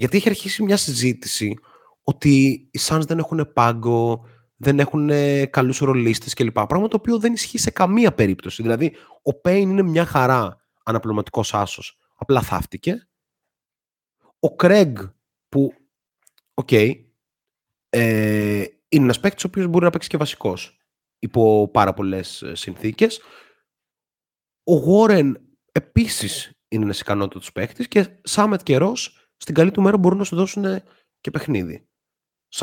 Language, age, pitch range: Greek, 30-49, 105-165 Hz